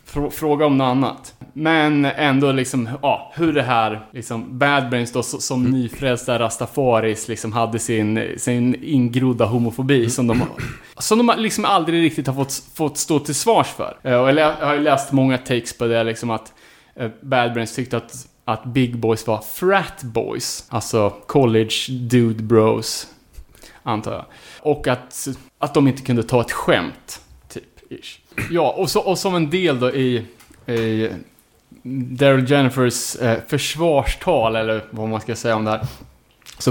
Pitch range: 120-150 Hz